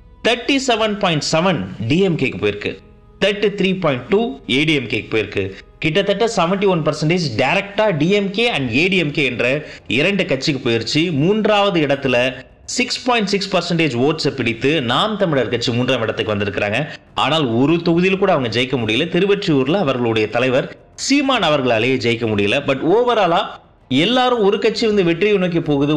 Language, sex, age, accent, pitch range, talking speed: Tamil, male, 30-49, native, 130-190 Hz, 55 wpm